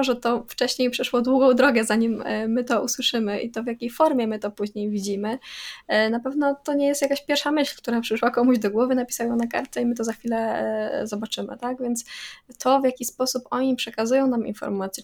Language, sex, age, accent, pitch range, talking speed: Polish, female, 10-29, native, 215-255 Hz, 210 wpm